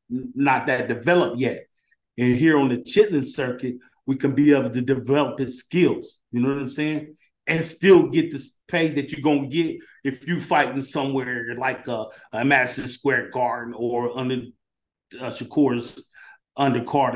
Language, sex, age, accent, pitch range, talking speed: English, male, 30-49, American, 135-175 Hz, 165 wpm